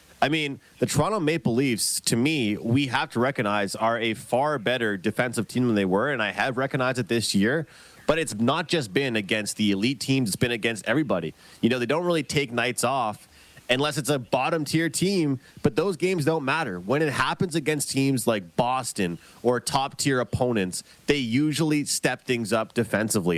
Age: 30-49